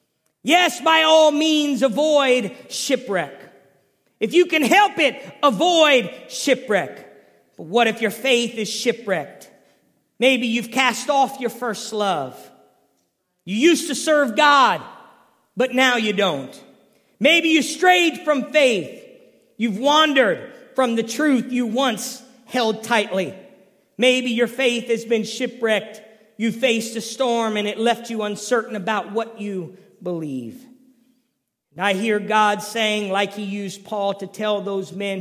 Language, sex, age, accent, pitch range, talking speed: English, male, 40-59, American, 210-280 Hz, 140 wpm